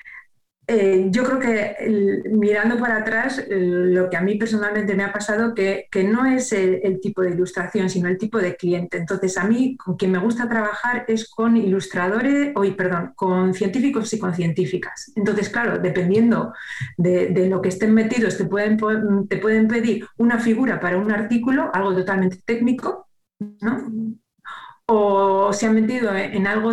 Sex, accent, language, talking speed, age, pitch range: female, Spanish, Spanish, 165 wpm, 40-59, 185-225 Hz